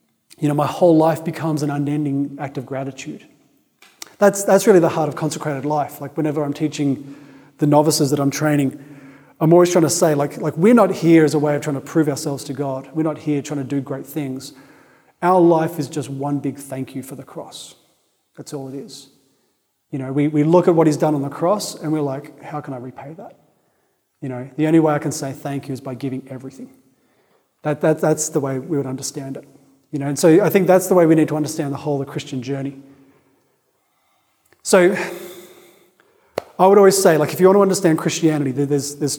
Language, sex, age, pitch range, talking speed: English, male, 30-49, 140-170 Hz, 225 wpm